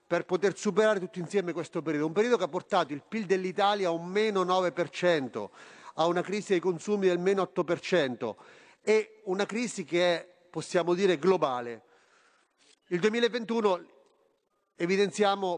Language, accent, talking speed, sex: Italian, native, 145 wpm, male